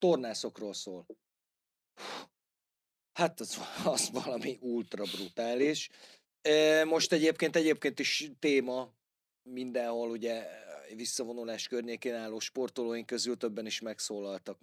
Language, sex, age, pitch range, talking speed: Hungarian, male, 30-49, 105-130 Hz, 90 wpm